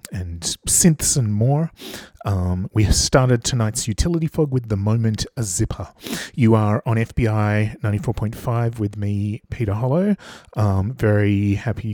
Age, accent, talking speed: 30-49, Australian, 140 wpm